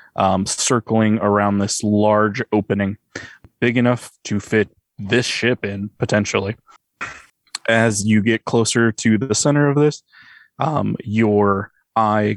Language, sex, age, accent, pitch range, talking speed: English, male, 20-39, American, 100-115 Hz, 125 wpm